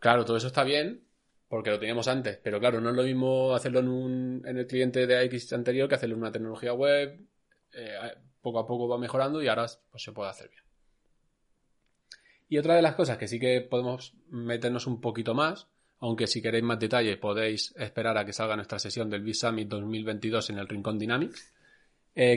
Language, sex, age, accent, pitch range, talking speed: Spanish, male, 20-39, Spanish, 110-130 Hz, 200 wpm